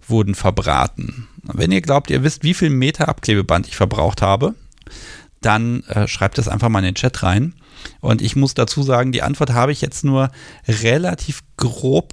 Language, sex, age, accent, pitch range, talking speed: German, male, 40-59, German, 105-135 Hz, 185 wpm